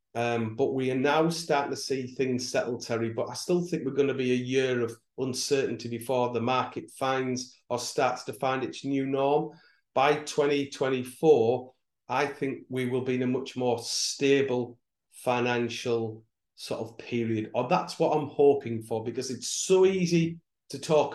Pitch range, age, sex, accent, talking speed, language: 120-145 Hz, 40-59, male, British, 175 wpm, English